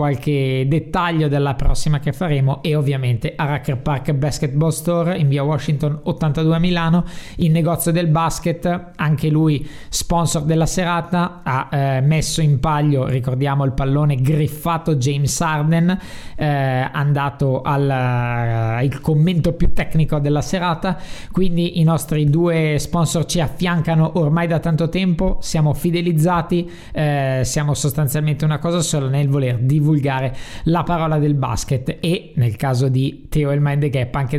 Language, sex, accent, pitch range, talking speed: Italian, male, native, 140-170 Hz, 140 wpm